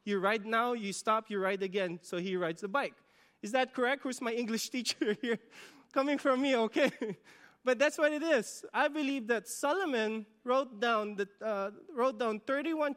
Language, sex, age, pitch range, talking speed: English, male, 20-39, 185-230 Hz, 175 wpm